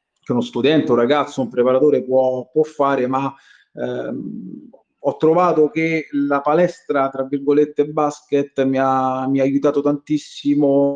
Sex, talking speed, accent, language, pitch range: male, 140 wpm, native, Italian, 130-150 Hz